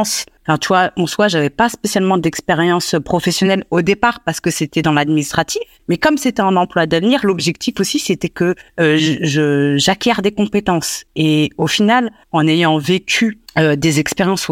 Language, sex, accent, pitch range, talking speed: French, female, French, 155-200 Hz, 165 wpm